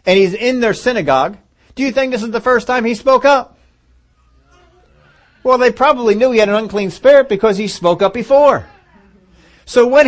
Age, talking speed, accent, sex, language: 40-59, 190 wpm, American, male, English